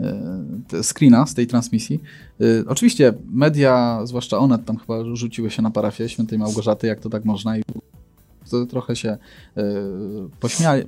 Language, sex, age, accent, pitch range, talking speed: Polish, male, 20-39, native, 110-125 Hz, 130 wpm